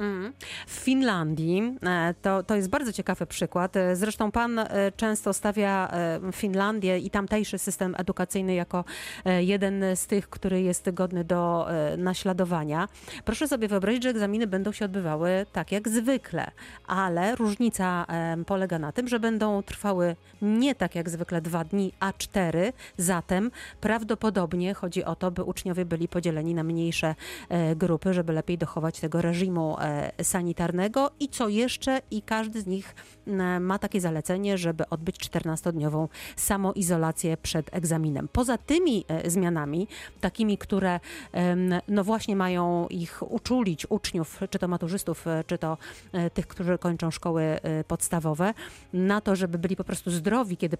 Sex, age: female, 30-49